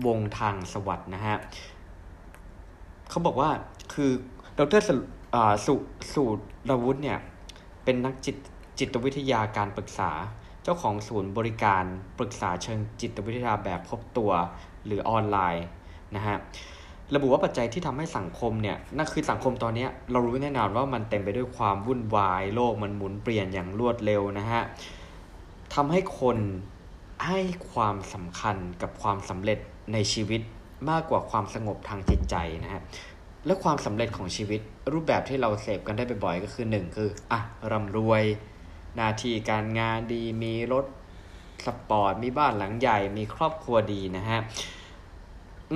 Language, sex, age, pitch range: Thai, male, 20-39, 95-120 Hz